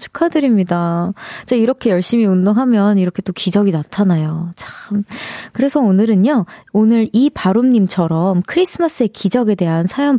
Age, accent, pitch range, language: 20-39, native, 195-290 Hz, Korean